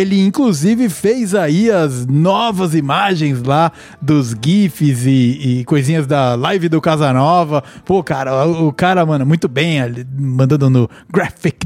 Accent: Brazilian